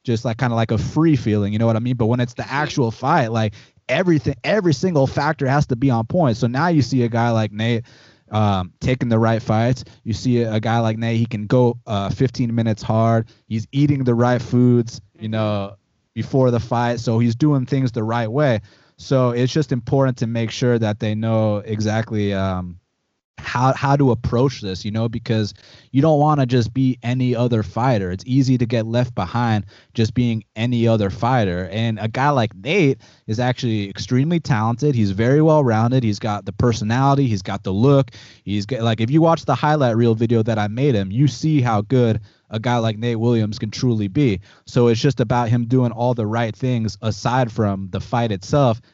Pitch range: 110-130 Hz